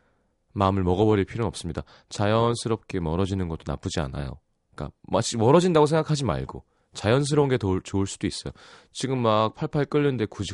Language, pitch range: Korean, 85-115 Hz